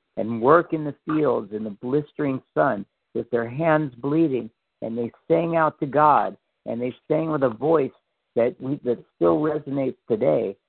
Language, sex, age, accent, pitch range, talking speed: English, male, 50-69, American, 115-145 Hz, 175 wpm